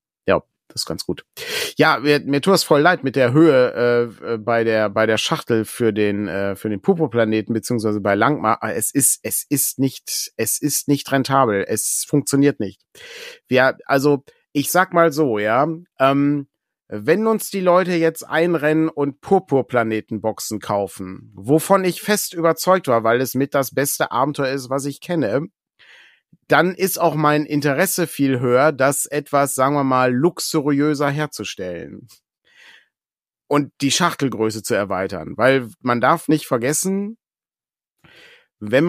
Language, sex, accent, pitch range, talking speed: German, male, German, 120-160 Hz, 155 wpm